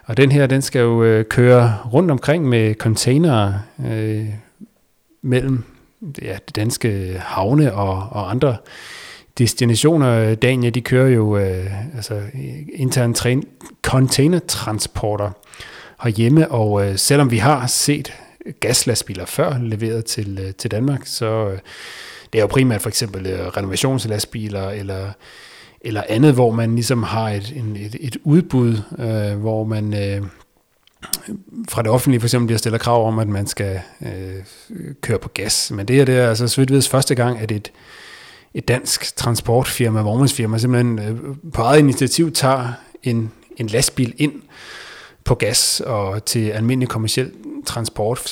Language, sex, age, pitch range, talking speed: Danish, male, 30-49, 110-130 Hz, 140 wpm